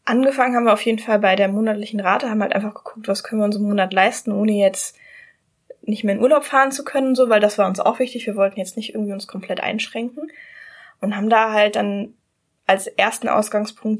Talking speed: 225 wpm